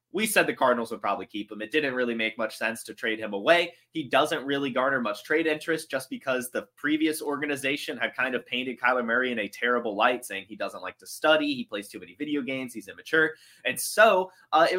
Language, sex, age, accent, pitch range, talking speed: English, male, 20-39, American, 120-175 Hz, 235 wpm